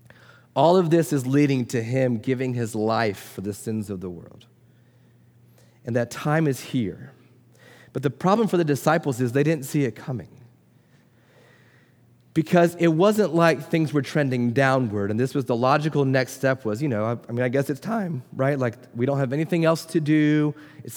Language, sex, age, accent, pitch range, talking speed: English, male, 30-49, American, 120-145 Hz, 195 wpm